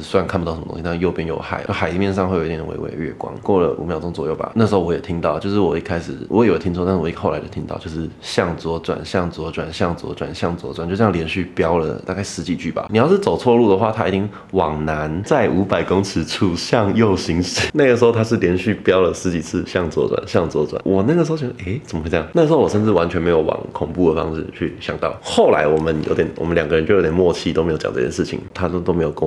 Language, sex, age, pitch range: Chinese, male, 20-39, 80-95 Hz